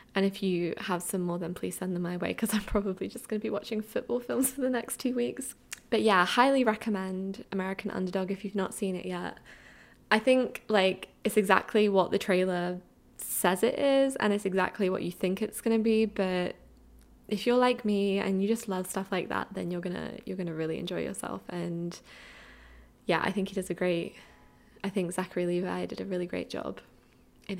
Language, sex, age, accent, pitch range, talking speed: English, female, 10-29, British, 185-215 Hz, 215 wpm